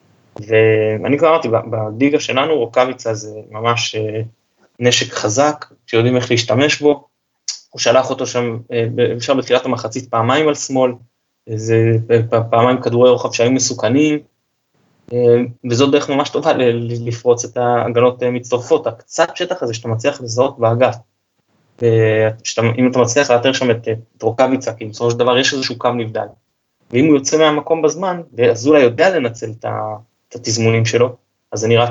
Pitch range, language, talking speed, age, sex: 115-140 Hz, Hebrew, 150 wpm, 20-39, male